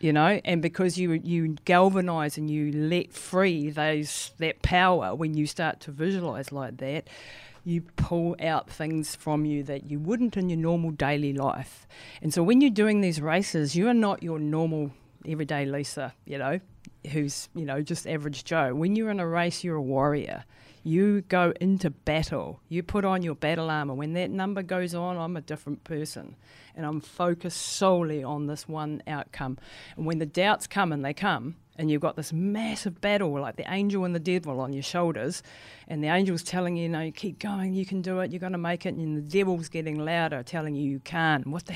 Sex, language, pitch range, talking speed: female, English, 150-180 Hz, 205 wpm